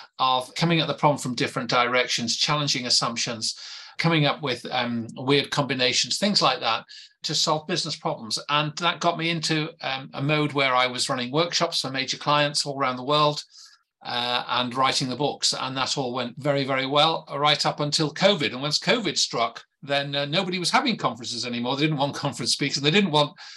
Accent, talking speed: British, 200 wpm